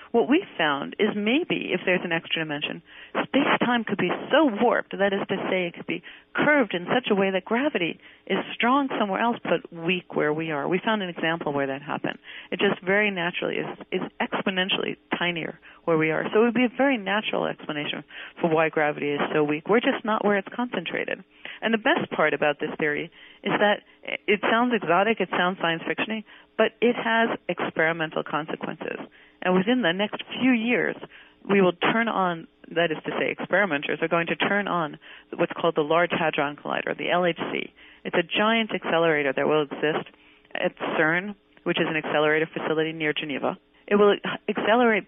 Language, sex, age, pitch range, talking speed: English, female, 40-59, 160-220 Hz, 195 wpm